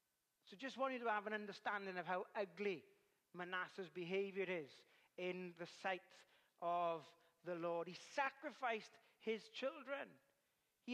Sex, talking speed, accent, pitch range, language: male, 135 wpm, British, 220-290 Hz, English